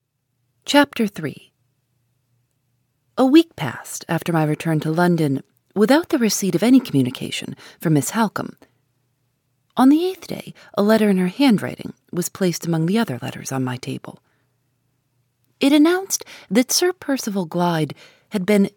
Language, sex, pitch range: English, female, 130-210 Hz